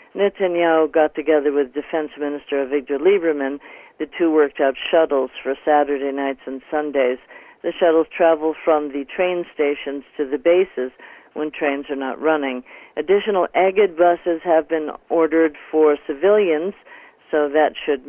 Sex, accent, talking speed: female, American, 145 wpm